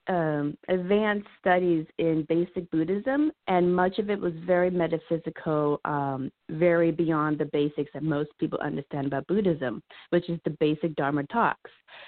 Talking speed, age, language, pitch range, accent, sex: 150 wpm, 30-49, English, 155-190 Hz, American, female